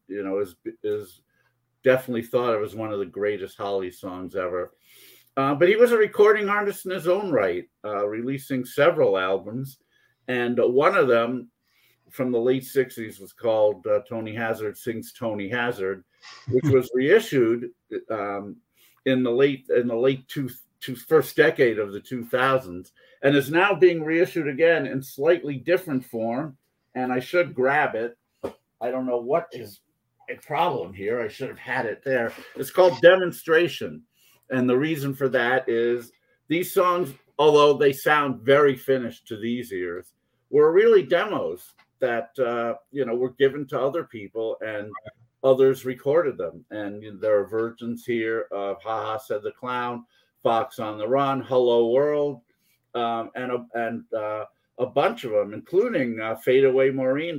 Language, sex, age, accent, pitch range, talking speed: English, male, 50-69, American, 115-155 Hz, 165 wpm